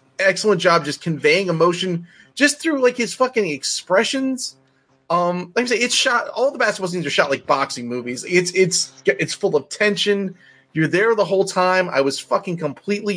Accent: American